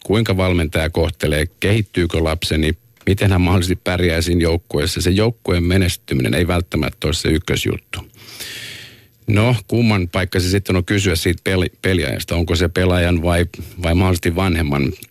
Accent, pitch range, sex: native, 85-105 Hz, male